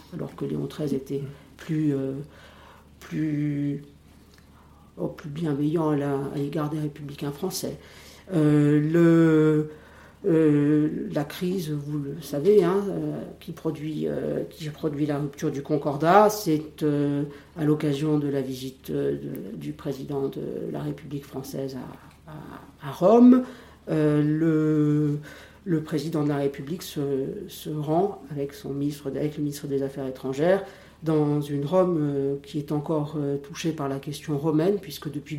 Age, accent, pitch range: 50-69, French, 135-155 Hz